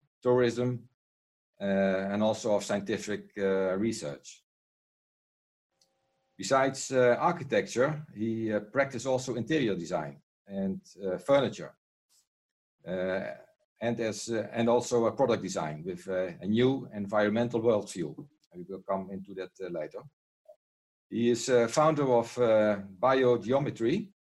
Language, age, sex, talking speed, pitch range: English, 50-69, male, 120 wpm, 100-130 Hz